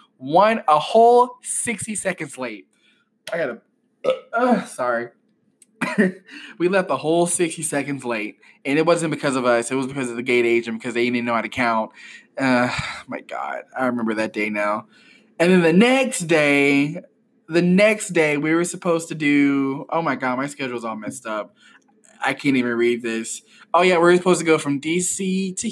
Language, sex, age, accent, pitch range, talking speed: English, male, 20-39, American, 135-180 Hz, 190 wpm